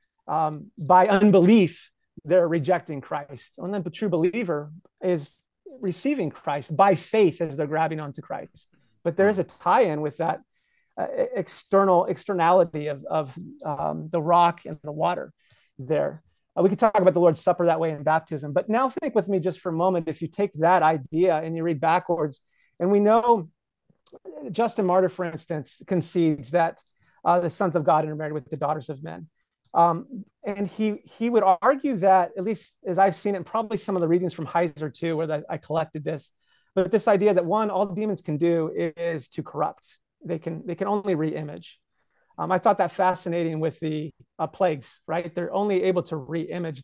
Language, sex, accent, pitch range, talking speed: English, male, American, 155-195 Hz, 195 wpm